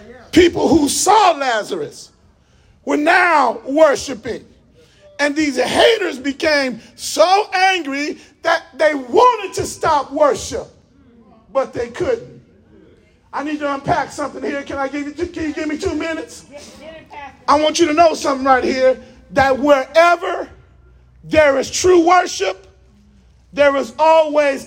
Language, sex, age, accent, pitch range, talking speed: English, male, 40-59, American, 285-345 Hz, 135 wpm